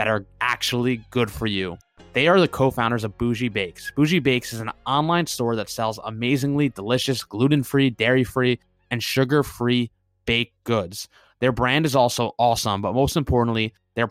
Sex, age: male, 20-39